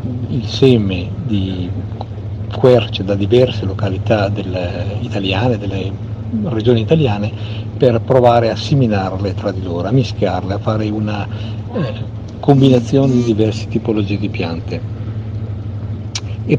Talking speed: 115 wpm